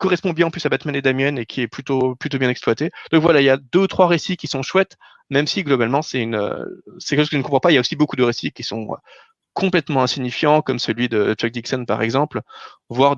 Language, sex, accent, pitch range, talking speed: French, male, French, 135-175 Hz, 270 wpm